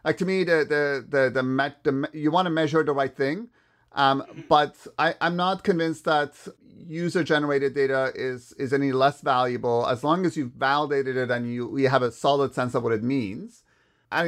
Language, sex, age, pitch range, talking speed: English, male, 30-49, 135-175 Hz, 200 wpm